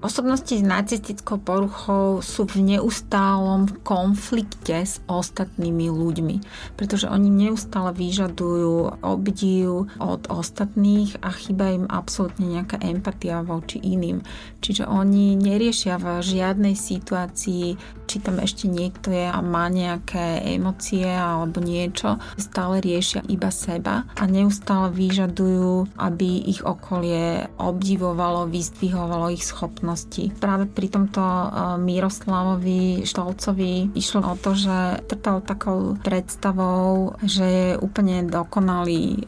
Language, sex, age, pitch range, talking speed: Slovak, female, 30-49, 175-200 Hz, 115 wpm